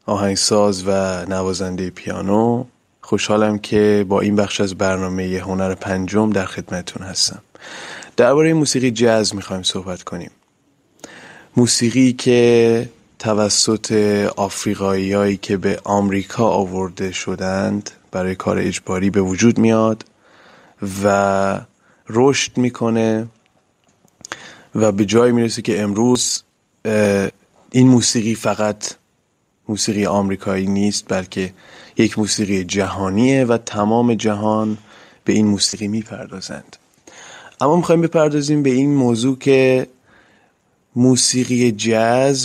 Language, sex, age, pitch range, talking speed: Persian, male, 20-39, 100-115 Hz, 100 wpm